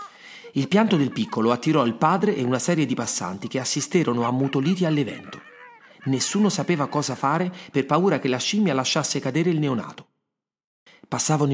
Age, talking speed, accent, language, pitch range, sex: 30-49, 155 wpm, native, Italian, 115-160 Hz, male